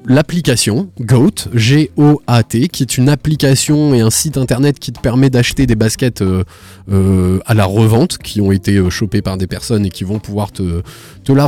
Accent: French